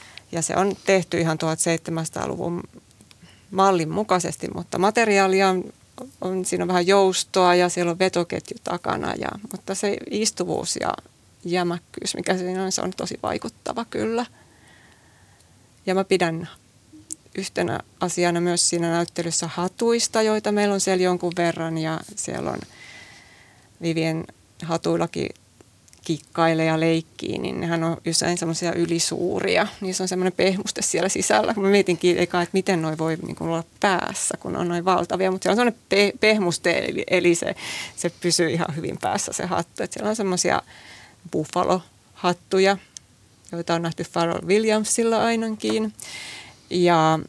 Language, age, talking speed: Finnish, 20-39, 140 wpm